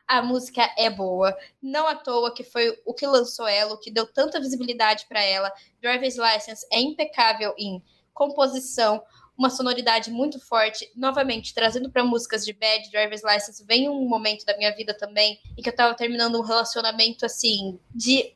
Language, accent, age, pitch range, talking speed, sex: Portuguese, Brazilian, 10-29, 220-275 Hz, 175 wpm, female